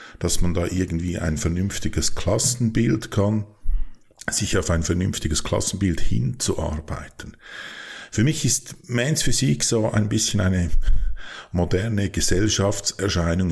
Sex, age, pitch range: male, 50-69, 85-110 Hz